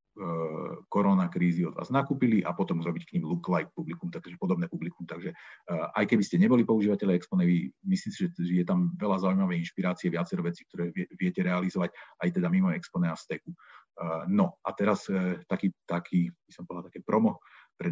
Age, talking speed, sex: 40-59, 170 wpm, male